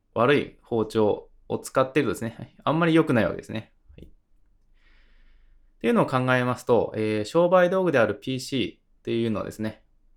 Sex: male